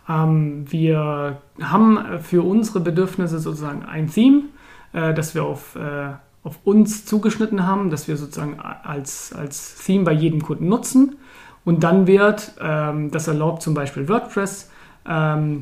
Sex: male